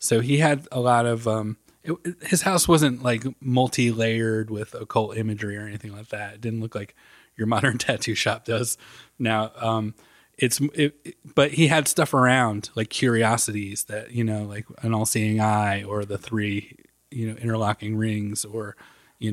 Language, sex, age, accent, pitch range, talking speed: English, male, 20-39, American, 110-125 Hz, 175 wpm